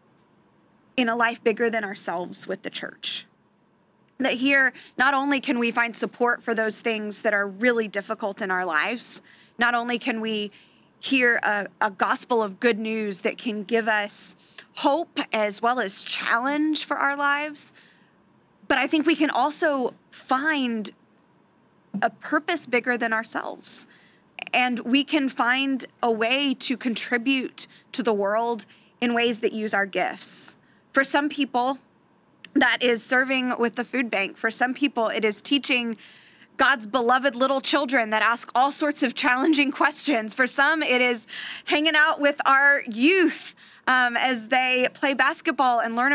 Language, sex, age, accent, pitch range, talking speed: English, female, 20-39, American, 230-280 Hz, 160 wpm